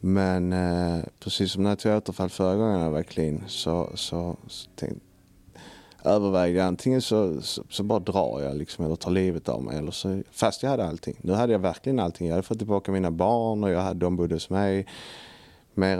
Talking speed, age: 210 wpm, 30-49